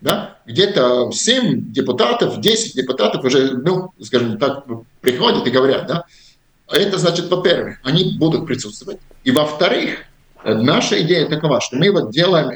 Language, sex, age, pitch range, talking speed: Russian, male, 50-69, 125-170 Hz, 140 wpm